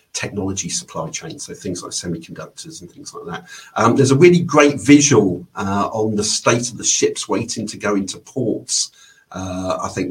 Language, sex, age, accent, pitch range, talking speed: English, male, 50-69, British, 95-115 Hz, 190 wpm